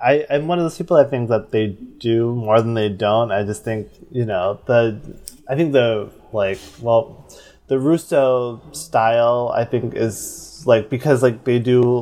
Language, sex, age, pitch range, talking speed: English, male, 20-39, 105-125 Hz, 185 wpm